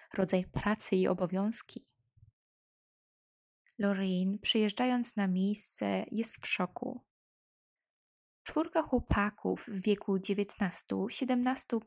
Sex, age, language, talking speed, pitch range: female, 20-39, Polish, 85 wpm, 200-260 Hz